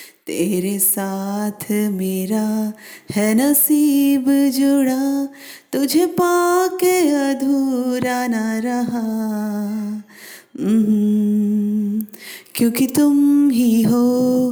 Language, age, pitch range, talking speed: Hindi, 30-49, 215-300 Hz, 65 wpm